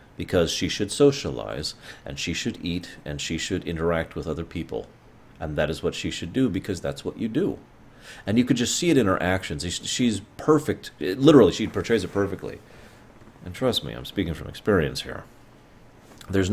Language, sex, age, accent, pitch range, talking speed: English, male, 30-49, American, 80-105 Hz, 190 wpm